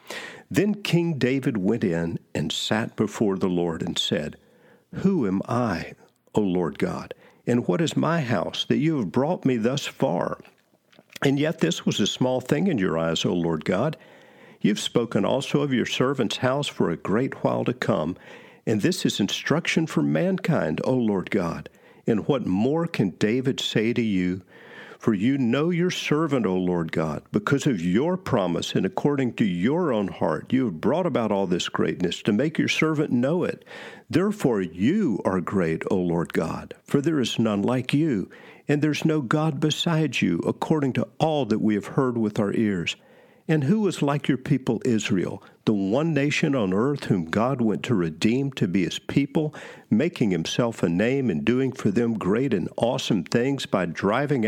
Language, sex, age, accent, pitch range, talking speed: English, male, 50-69, American, 105-150 Hz, 185 wpm